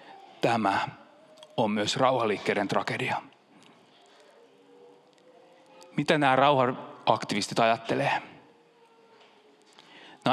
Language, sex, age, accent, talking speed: Finnish, male, 30-49, native, 60 wpm